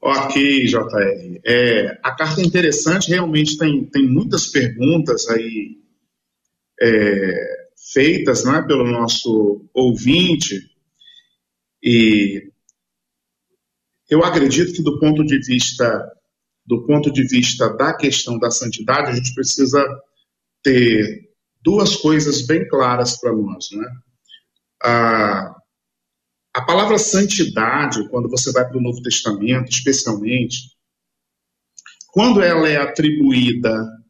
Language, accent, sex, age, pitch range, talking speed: Portuguese, Brazilian, male, 50-69, 115-160 Hz, 100 wpm